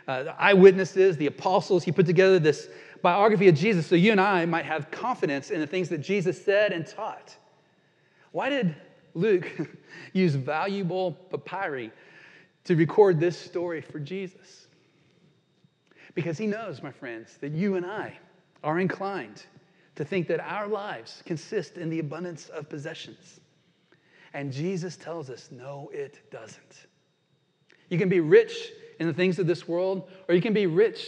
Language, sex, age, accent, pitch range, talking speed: English, male, 30-49, American, 160-200 Hz, 160 wpm